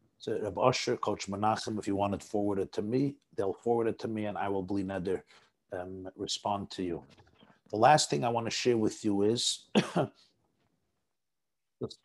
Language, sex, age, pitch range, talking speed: English, male, 50-69, 100-120 Hz, 185 wpm